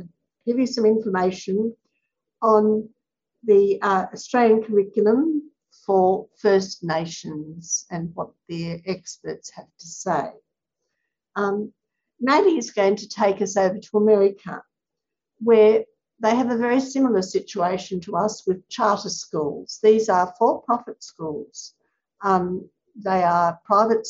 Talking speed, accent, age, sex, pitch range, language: 120 wpm, Australian, 60-79, female, 175-220 Hz, English